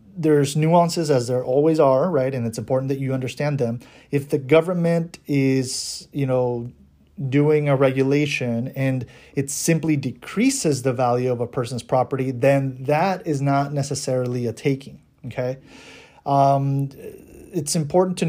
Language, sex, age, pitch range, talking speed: English, male, 30-49, 130-155 Hz, 150 wpm